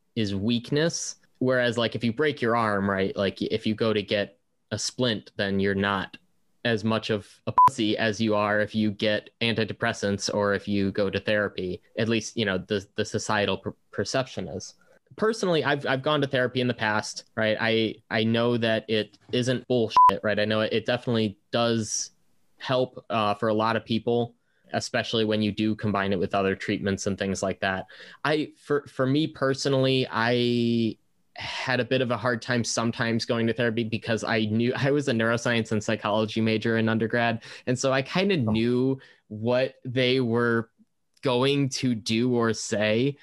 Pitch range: 105-125 Hz